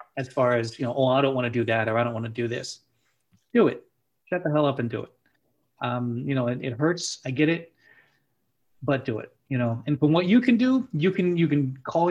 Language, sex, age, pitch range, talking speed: English, male, 30-49, 120-155 Hz, 265 wpm